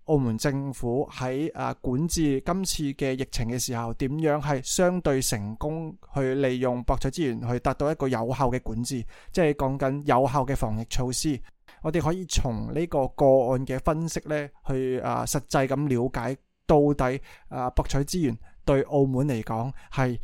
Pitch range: 120-140 Hz